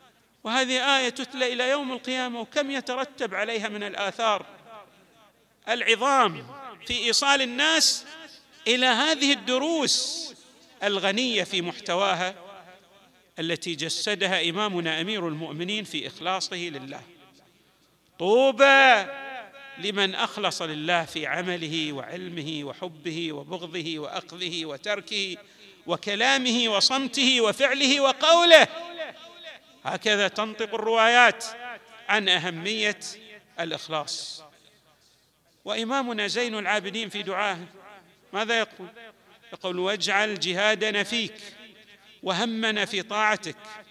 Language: Arabic